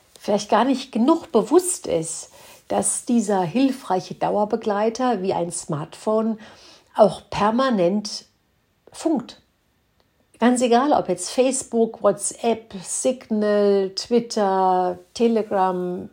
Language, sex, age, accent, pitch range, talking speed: German, female, 50-69, German, 190-230 Hz, 95 wpm